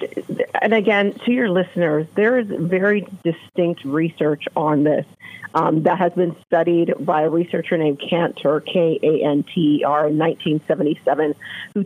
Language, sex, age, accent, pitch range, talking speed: English, female, 40-59, American, 165-215 Hz, 130 wpm